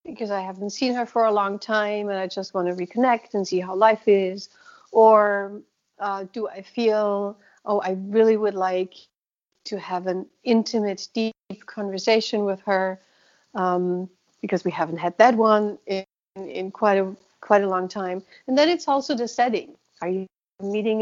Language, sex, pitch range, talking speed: English, female, 195-230 Hz, 175 wpm